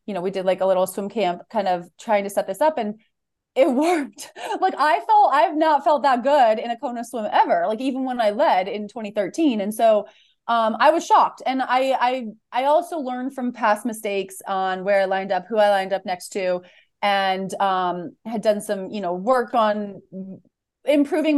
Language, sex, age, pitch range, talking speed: English, female, 30-49, 195-260 Hz, 210 wpm